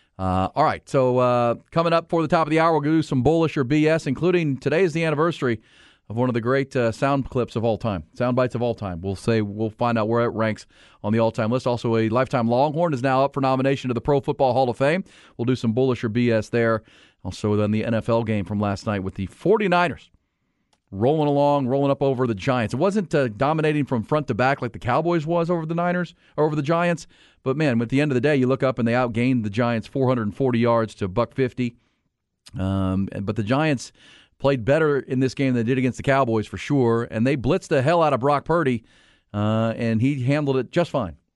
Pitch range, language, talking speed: 115-145 Hz, English, 240 wpm